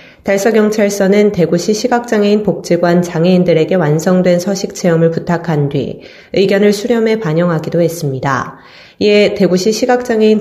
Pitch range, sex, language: 165-210 Hz, female, Korean